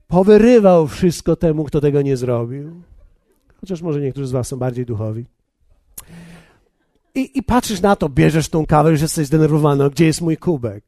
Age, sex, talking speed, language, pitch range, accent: 50-69, male, 170 wpm, Polish, 145-195 Hz, native